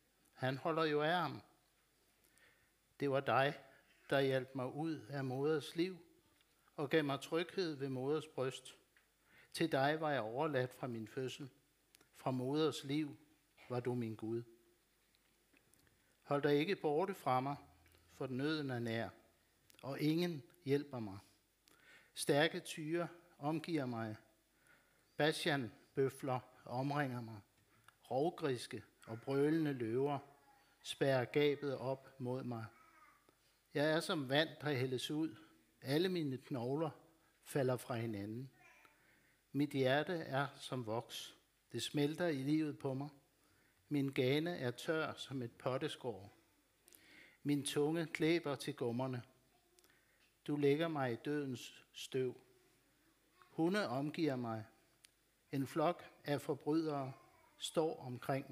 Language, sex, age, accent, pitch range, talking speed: Danish, male, 60-79, native, 125-155 Hz, 120 wpm